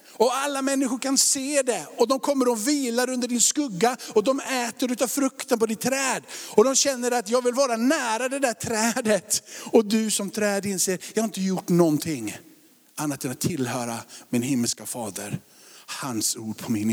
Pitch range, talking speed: 130-205 Hz, 195 wpm